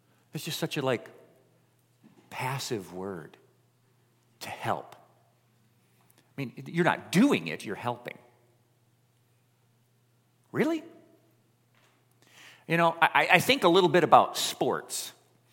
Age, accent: 50-69, American